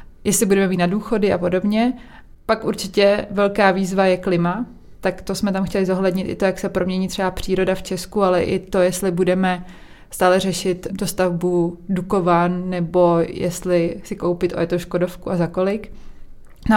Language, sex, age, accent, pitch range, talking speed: Czech, female, 20-39, native, 185-210 Hz, 170 wpm